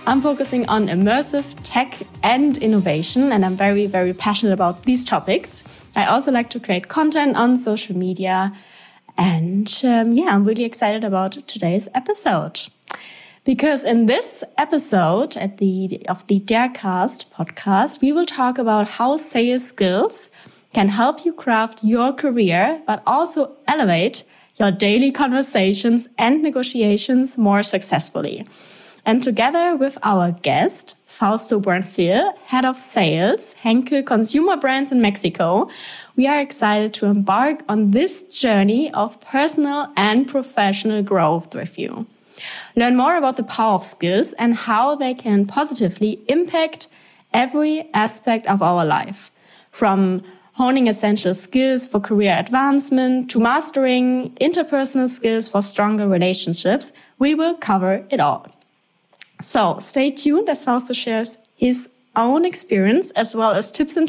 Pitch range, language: 205-270 Hz, English